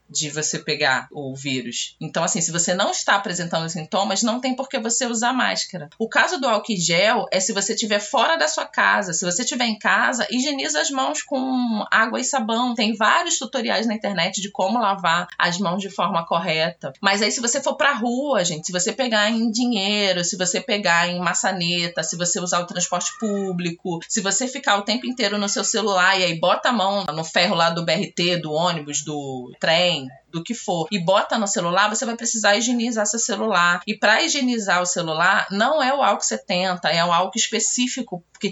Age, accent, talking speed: 20-39, Brazilian, 205 wpm